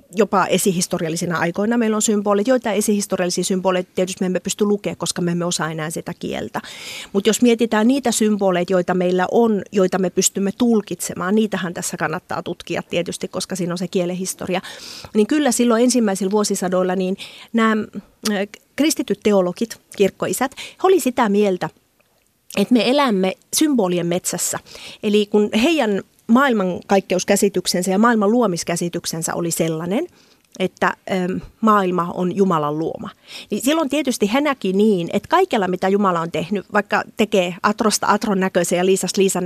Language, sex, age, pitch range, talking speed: Finnish, female, 30-49, 180-220 Hz, 145 wpm